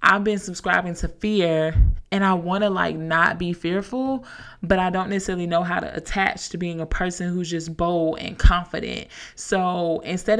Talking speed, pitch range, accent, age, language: 185 wpm, 170-210 Hz, American, 20-39, English